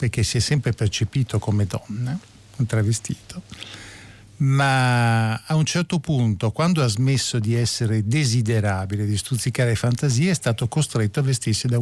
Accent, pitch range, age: native, 105-125 Hz, 50-69